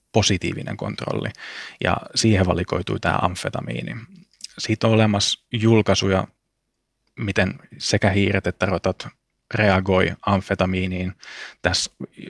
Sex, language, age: male, Finnish, 20-39